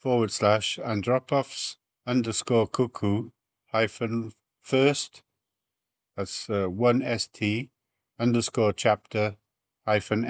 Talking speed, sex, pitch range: 80 wpm, male, 100-130 Hz